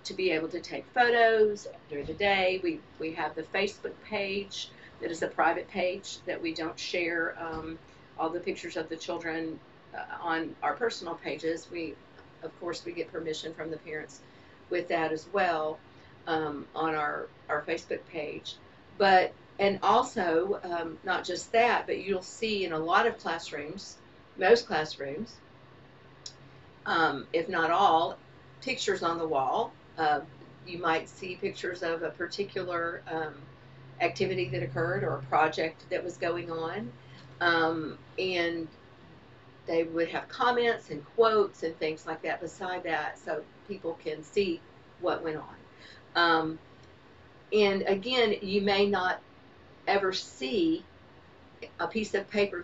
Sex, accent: female, American